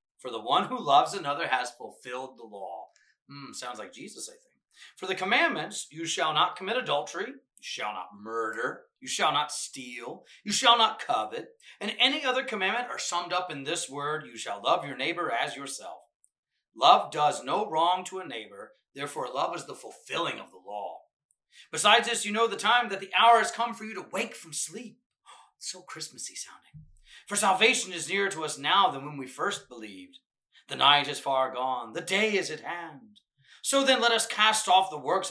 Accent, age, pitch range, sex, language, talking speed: American, 30-49, 145-230 Hz, male, English, 200 wpm